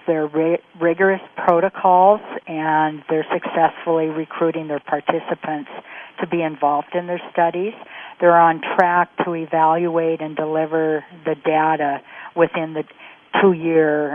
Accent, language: American, English